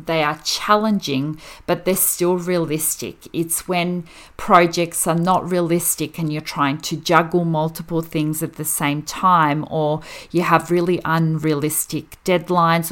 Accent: Australian